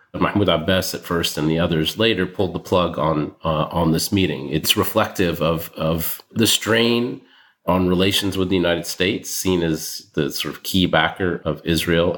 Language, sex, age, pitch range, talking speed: English, male, 30-49, 80-95 Hz, 180 wpm